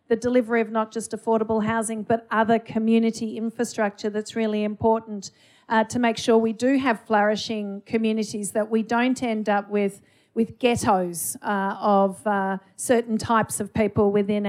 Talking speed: 160 wpm